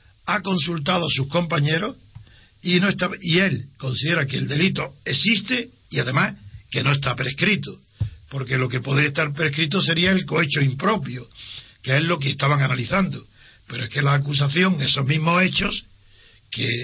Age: 60-79